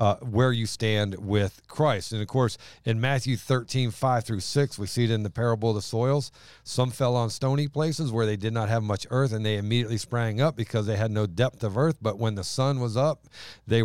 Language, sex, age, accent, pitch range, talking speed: English, male, 50-69, American, 105-125 Hz, 240 wpm